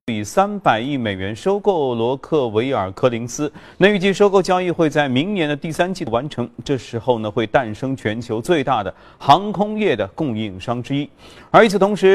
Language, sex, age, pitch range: Chinese, male, 30-49, 120-170 Hz